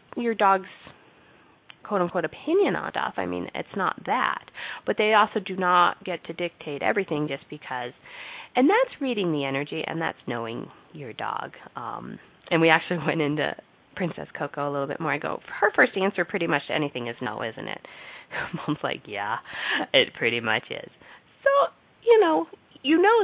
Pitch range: 145-195 Hz